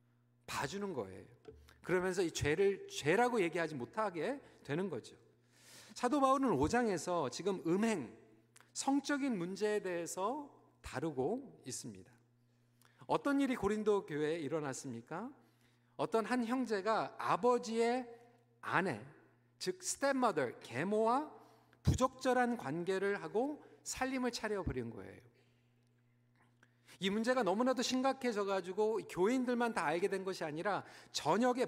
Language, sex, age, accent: Korean, male, 40-59, native